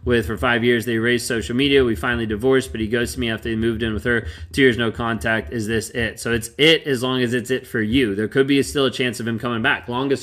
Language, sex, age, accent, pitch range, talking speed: English, male, 30-49, American, 115-135 Hz, 300 wpm